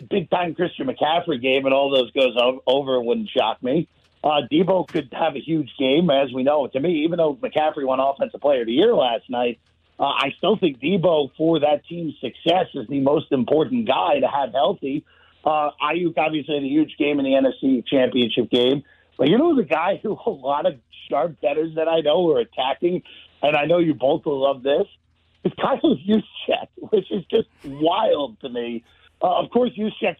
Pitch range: 135-180 Hz